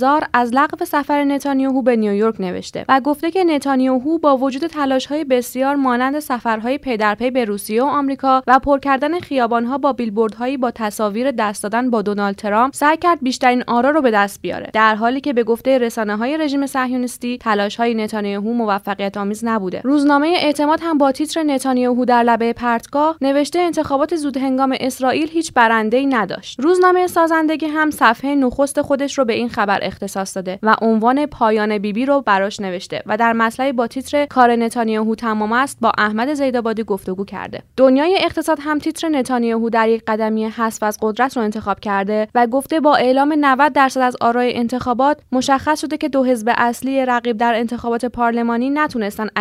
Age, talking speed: 20-39, 175 wpm